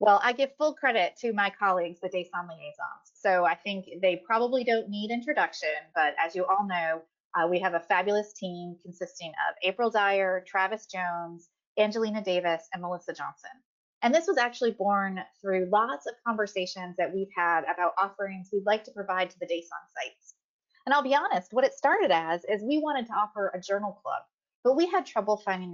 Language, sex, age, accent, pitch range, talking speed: English, female, 30-49, American, 175-240 Hz, 195 wpm